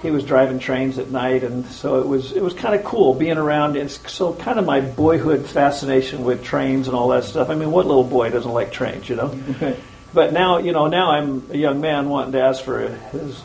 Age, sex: 50-69, male